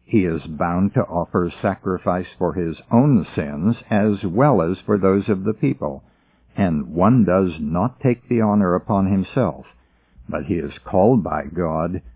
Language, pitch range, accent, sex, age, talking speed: English, 85-110 Hz, American, male, 60-79, 165 wpm